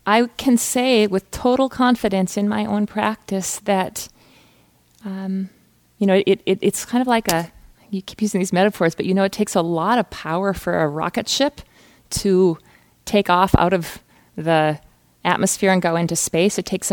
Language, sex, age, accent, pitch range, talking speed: English, female, 40-59, American, 165-210 Hz, 175 wpm